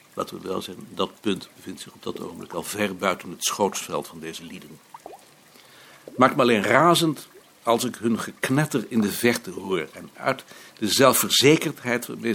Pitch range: 110-130 Hz